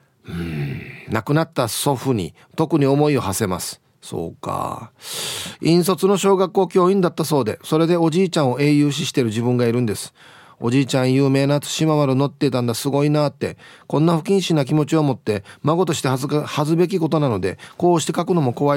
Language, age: Japanese, 40-59